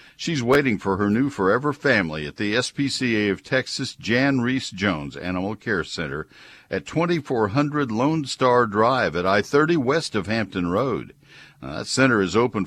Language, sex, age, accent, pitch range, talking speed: English, male, 60-79, American, 90-125 Hz, 160 wpm